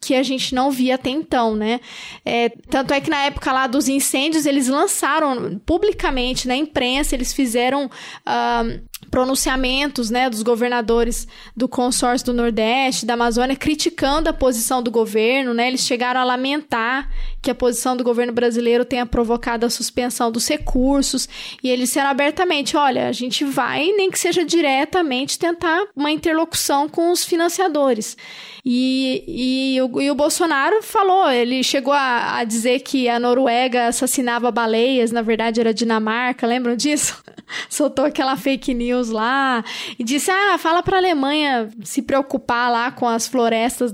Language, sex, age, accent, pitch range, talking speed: Portuguese, female, 10-29, Brazilian, 240-285 Hz, 155 wpm